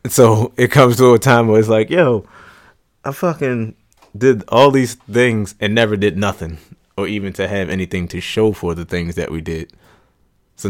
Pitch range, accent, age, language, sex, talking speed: 95-130 Hz, American, 20-39, English, male, 190 wpm